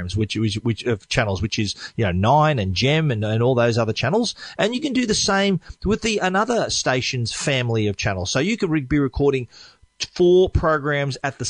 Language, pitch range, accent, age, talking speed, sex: English, 115-150 Hz, Australian, 40-59, 215 wpm, male